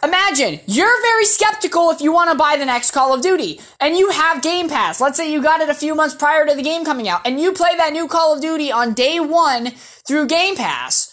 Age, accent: 20-39, American